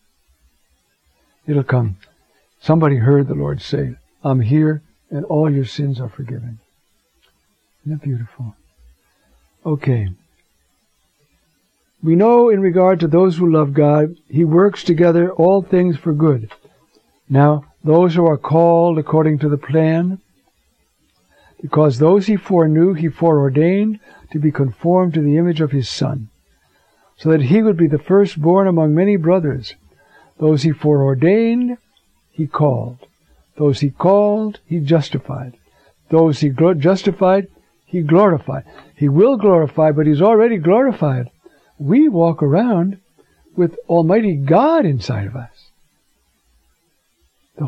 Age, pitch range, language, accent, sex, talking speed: 60-79, 135-180 Hz, English, American, male, 125 wpm